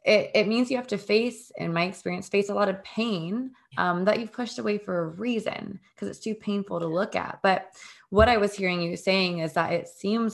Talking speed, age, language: 240 wpm, 20-39, English